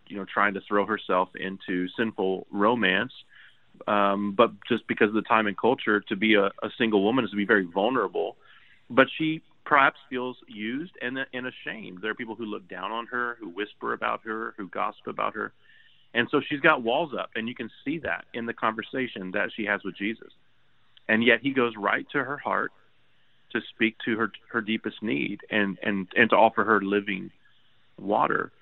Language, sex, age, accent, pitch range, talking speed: English, male, 30-49, American, 100-120 Hz, 200 wpm